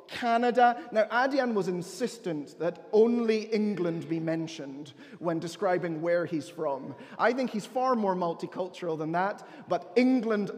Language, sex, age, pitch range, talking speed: English, male, 30-49, 175-230 Hz, 140 wpm